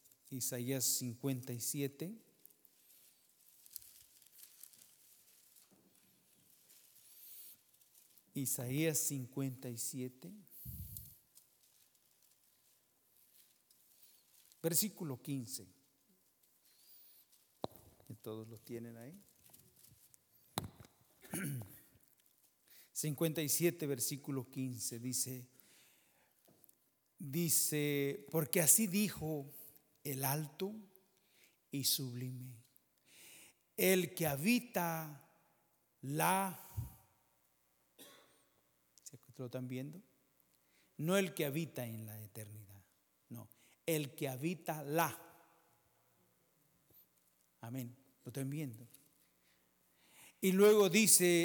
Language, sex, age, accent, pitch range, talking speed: English, male, 50-69, Mexican, 115-165 Hz, 65 wpm